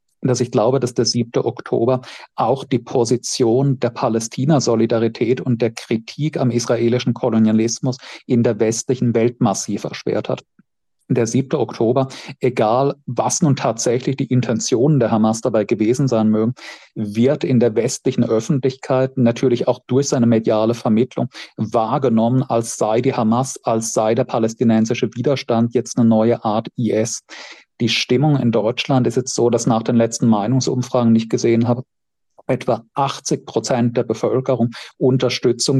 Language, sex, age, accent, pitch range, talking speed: German, male, 40-59, German, 115-130 Hz, 150 wpm